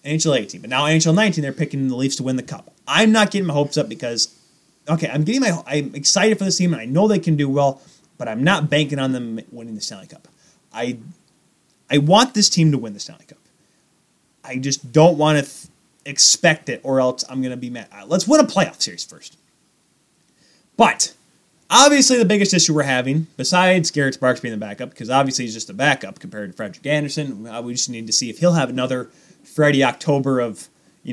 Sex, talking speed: male, 220 wpm